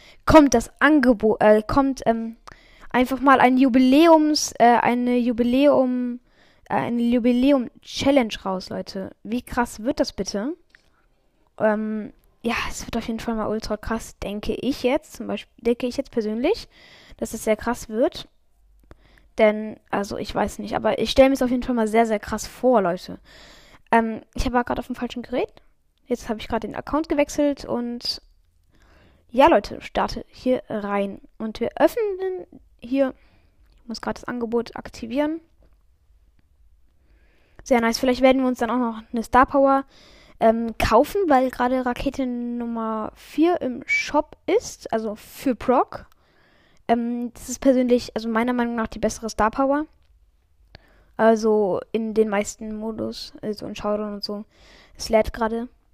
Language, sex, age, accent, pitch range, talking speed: German, female, 10-29, German, 215-265 Hz, 160 wpm